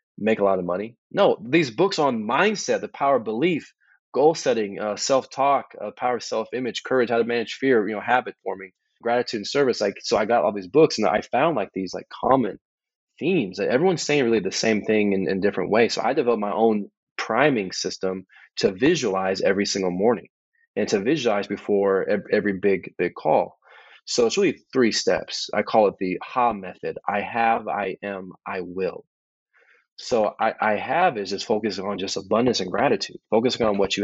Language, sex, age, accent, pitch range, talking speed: English, male, 20-39, American, 100-125 Hz, 205 wpm